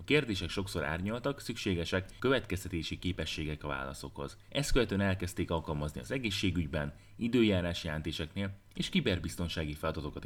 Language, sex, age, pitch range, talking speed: Hungarian, male, 30-49, 80-100 Hz, 110 wpm